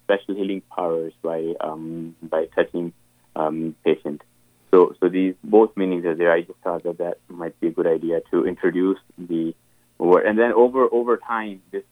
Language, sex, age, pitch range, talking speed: English, male, 20-39, 85-100 Hz, 180 wpm